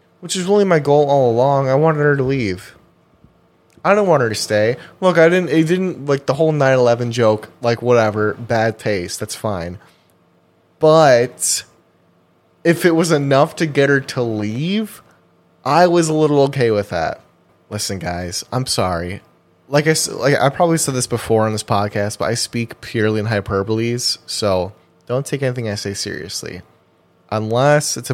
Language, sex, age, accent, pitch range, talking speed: English, male, 20-39, American, 100-135 Hz, 175 wpm